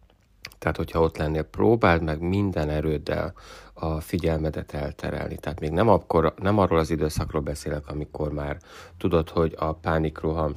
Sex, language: male, Hungarian